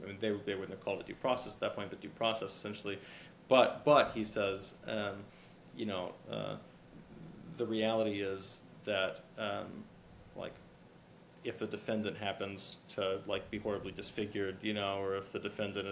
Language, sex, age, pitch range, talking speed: English, male, 20-39, 100-115 Hz, 175 wpm